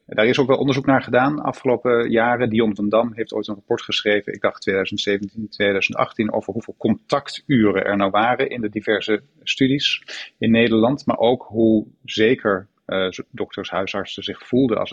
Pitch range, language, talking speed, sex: 100-120 Hz, Dutch, 175 wpm, male